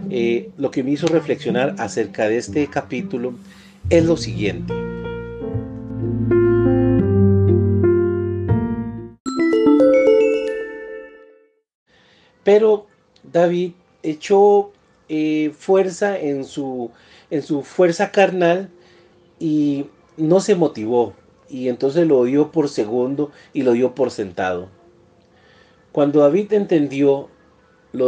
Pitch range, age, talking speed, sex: 115-180 Hz, 40-59, 90 wpm, male